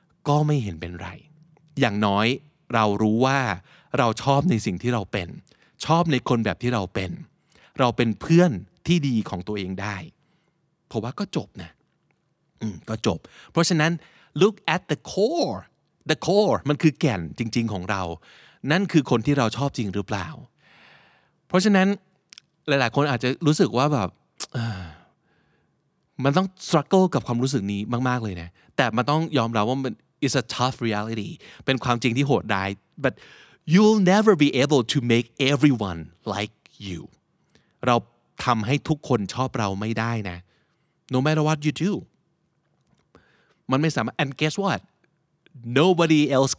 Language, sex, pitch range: Thai, male, 110-160 Hz